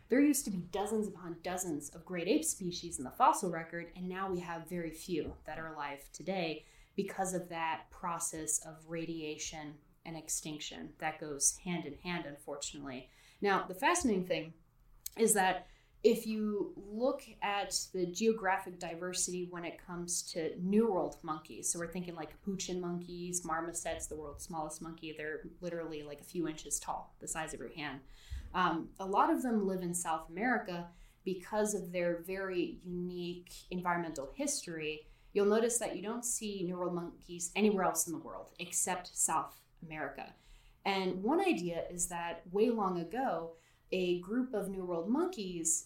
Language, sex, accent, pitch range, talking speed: English, female, American, 160-195 Hz, 170 wpm